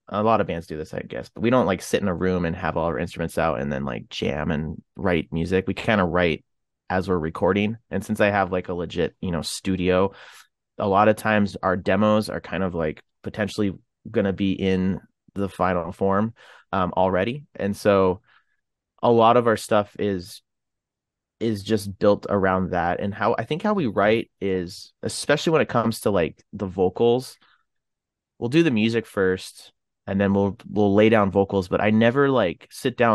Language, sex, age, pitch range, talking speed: English, male, 30-49, 95-110 Hz, 205 wpm